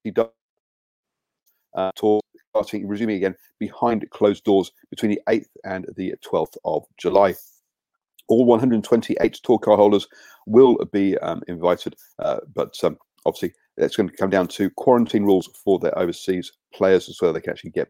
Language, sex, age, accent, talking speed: English, male, 40-59, British, 160 wpm